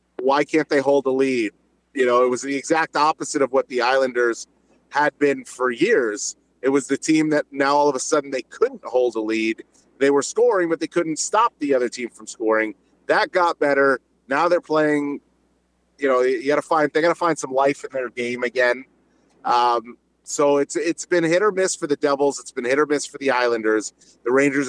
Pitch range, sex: 125-155 Hz, male